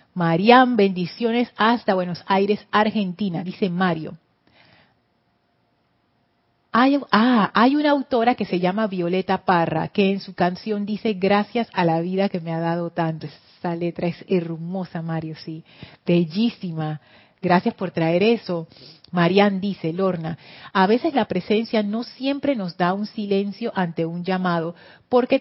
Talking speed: 140 wpm